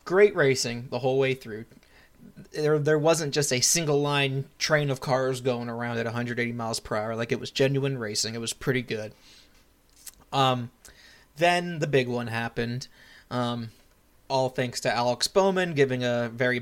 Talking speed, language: 170 wpm, English